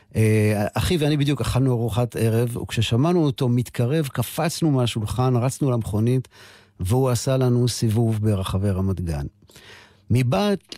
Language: Hebrew